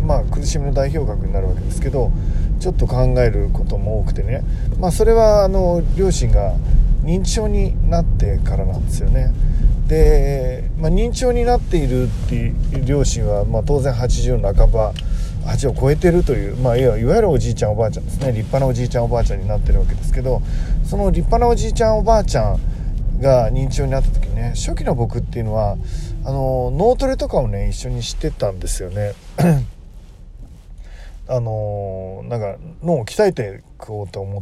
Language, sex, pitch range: Japanese, male, 100-135 Hz